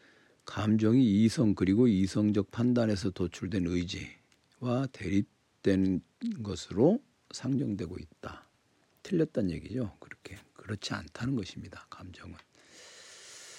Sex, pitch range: male, 95-130 Hz